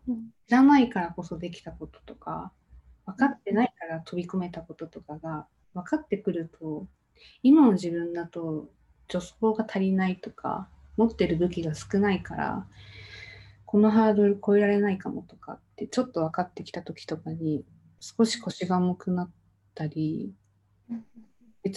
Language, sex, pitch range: Japanese, female, 160-210 Hz